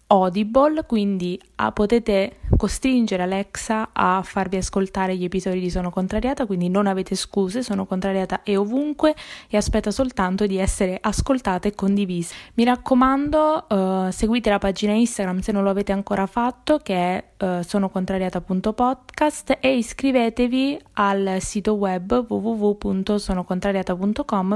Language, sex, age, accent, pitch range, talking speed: Italian, female, 20-39, native, 190-225 Hz, 130 wpm